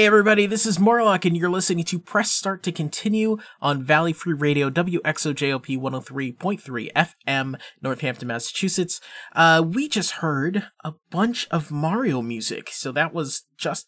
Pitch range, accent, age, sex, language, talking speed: 145-195 Hz, American, 20-39, male, English, 150 wpm